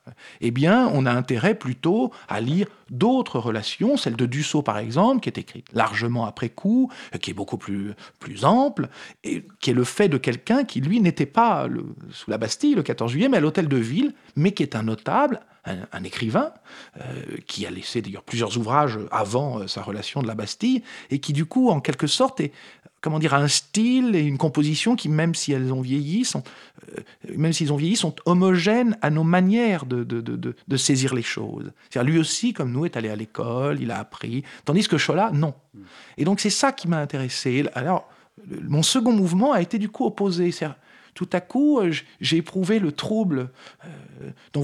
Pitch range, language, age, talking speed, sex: 130-200 Hz, French, 50-69, 205 wpm, male